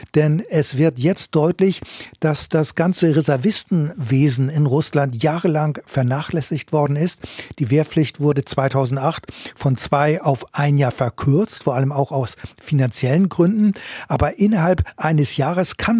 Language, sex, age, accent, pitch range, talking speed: German, male, 60-79, German, 145-175 Hz, 135 wpm